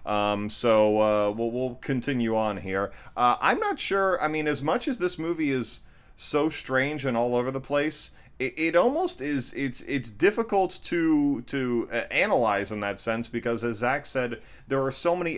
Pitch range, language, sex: 110-135 Hz, English, male